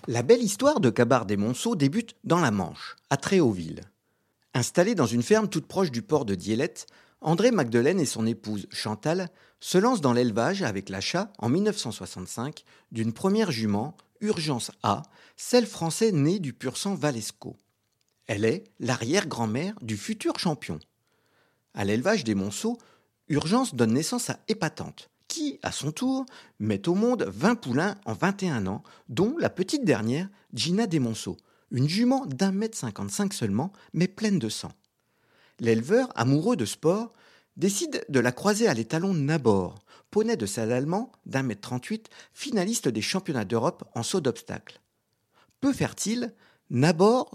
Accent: French